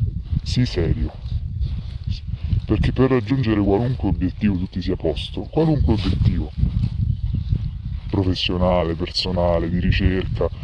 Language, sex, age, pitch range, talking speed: Italian, female, 30-49, 90-110 Hz, 95 wpm